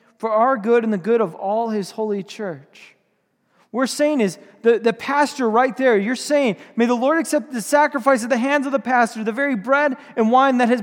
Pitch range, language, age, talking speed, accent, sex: 220-275 Hz, English, 30-49, 225 wpm, American, male